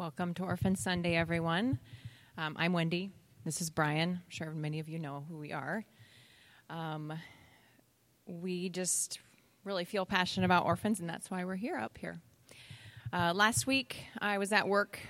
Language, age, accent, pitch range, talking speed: English, 30-49, American, 155-185 Hz, 165 wpm